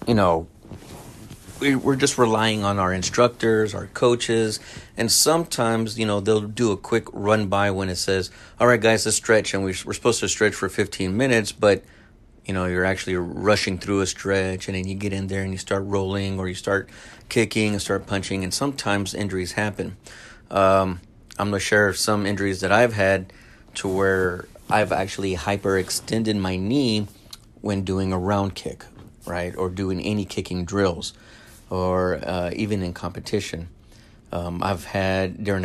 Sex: male